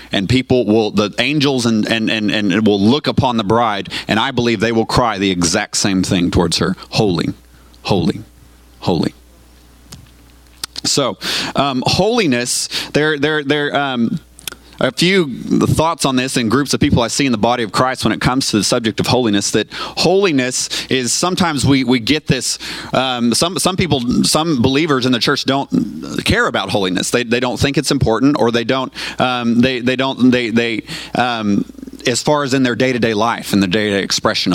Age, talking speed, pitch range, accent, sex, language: 30-49, 190 wpm, 105-135 Hz, American, male, English